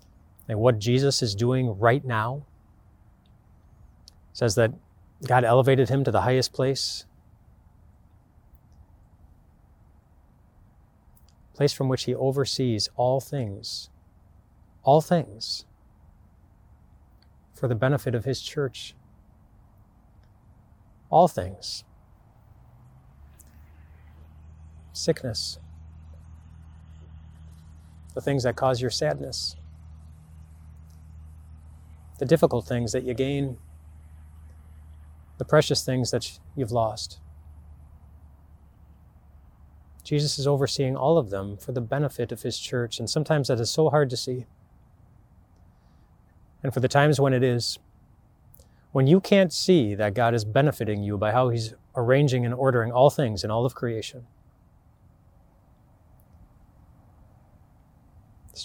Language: English